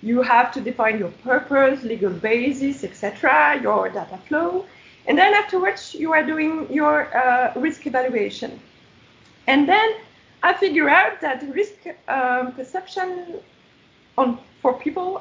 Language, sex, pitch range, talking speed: English, female, 255-345 Hz, 135 wpm